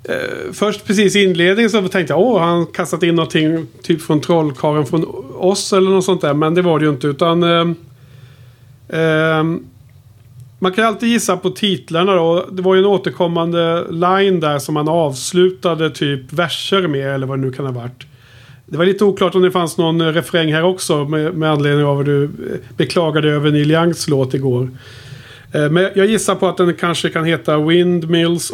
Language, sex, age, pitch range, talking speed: Swedish, male, 50-69, 140-175 Hz, 190 wpm